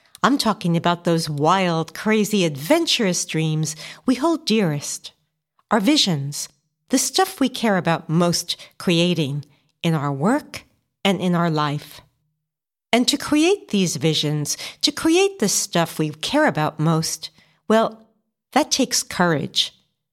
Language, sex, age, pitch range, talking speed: English, female, 60-79, 160-240 Hz, 130 wpm